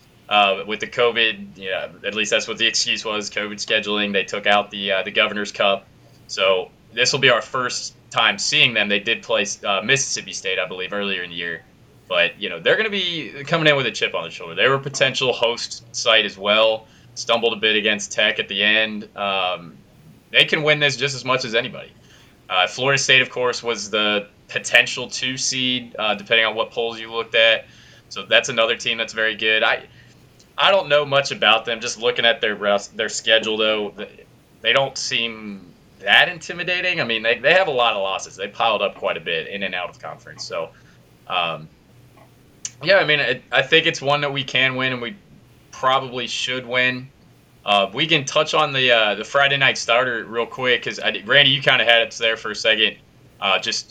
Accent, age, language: American, 20-39, English